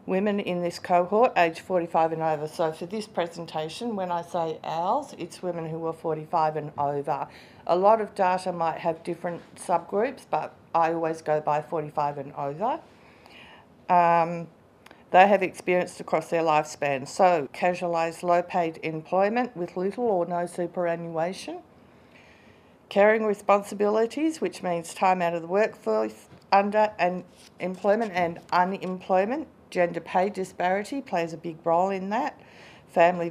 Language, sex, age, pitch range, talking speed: English, female, 50-69, 170-200 Hz, 140 wpm